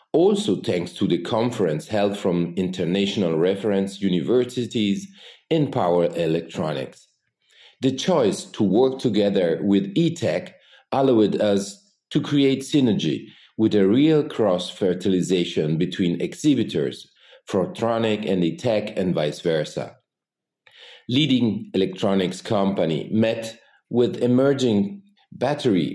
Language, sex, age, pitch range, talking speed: English, male, 40-59, 95-135 Hz, 105 wpm